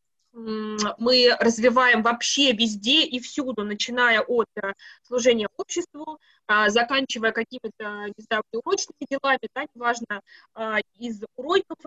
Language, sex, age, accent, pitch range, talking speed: Russian, female, 20-39, native, 215-265 Hz, 90 wpm